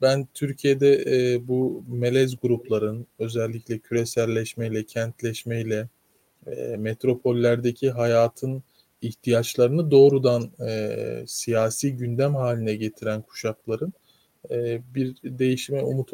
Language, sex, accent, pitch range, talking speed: Turkish, male, native, 115-135 Hz, 75 wpm